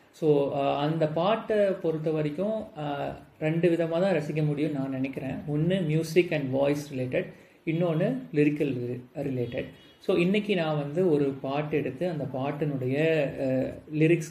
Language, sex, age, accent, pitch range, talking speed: Tamil, male, 30-49, native, 130-160 Hz, 125 wpm